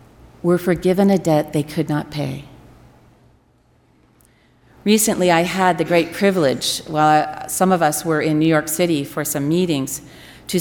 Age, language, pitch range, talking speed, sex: 40-59, English, 140-175 Hz, 155 wpm, female